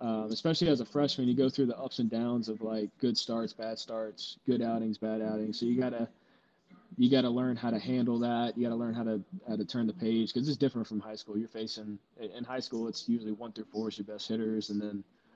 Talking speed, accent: 250 wpm, American